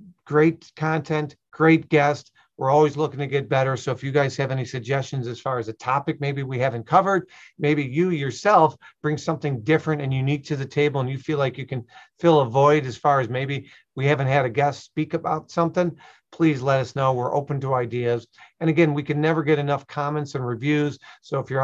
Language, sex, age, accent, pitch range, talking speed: English, male, 50-69, American, 130-150 Hz, 220 wpm